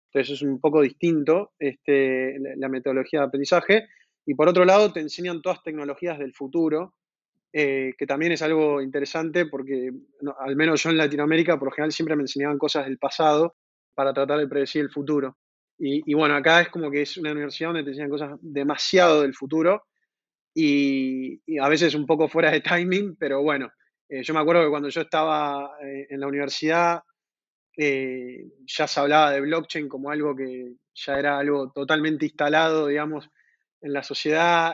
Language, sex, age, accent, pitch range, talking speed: Spanish, male, 20-39, Argentinian, 140-165 Hz, 180 wpm